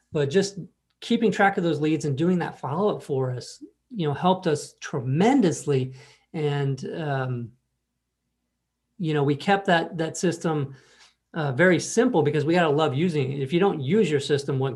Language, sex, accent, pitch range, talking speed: English, male, American, 135-165 Hz, 180 wpm